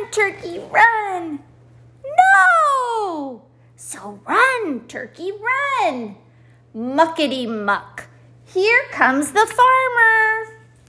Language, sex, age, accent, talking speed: English, female, 40-59, American, 65 wpm